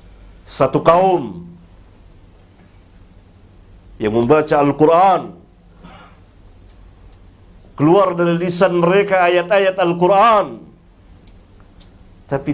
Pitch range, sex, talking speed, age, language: 90-120 Hz, male, 55 wpm, 50-69, Malay